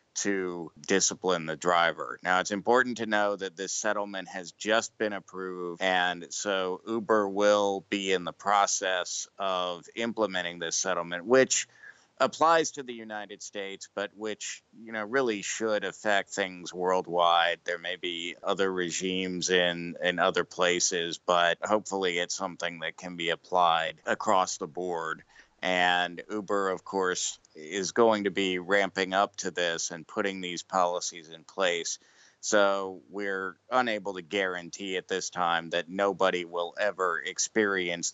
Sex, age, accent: male, 50-69, American